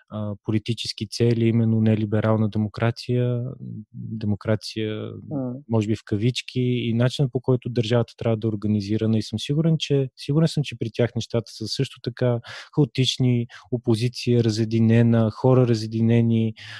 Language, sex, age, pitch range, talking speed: Bulgarian, male, 20-39, 110-130 Hz, 130 wpm